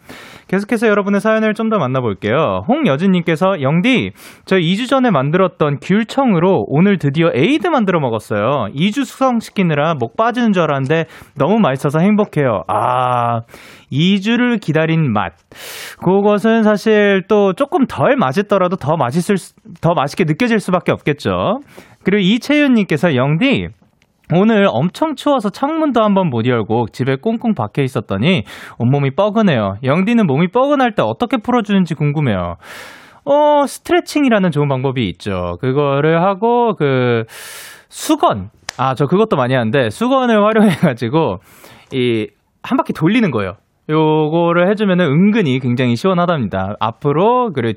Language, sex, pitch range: Korean, male, 130-215 Hz